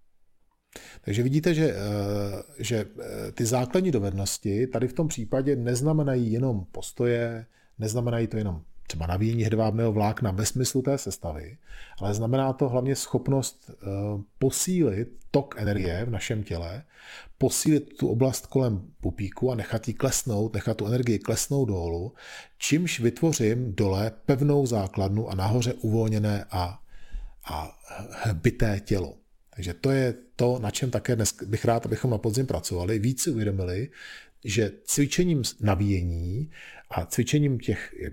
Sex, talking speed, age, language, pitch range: male, 135 wpm, 40-59, Czech, 100-125 Hz